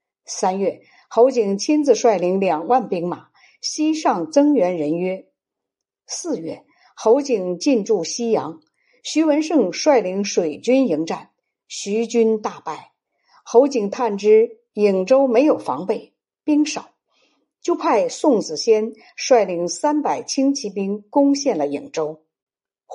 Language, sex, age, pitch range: Chinese, female, 50-69, 200-285 Hz